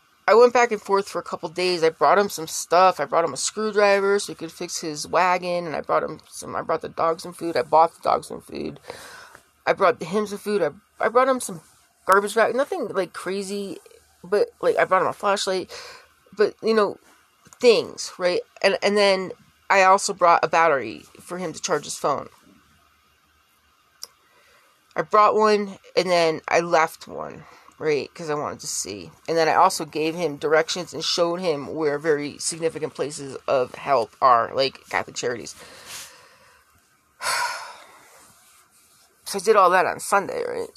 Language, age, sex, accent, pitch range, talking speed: English, 30-49, female, American, 165-265 Hz, 195 wpm